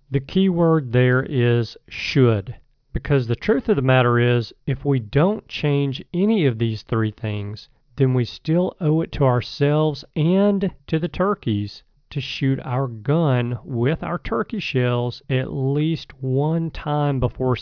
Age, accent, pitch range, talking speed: 40-59, American, 115-145 Hz, 155 wpm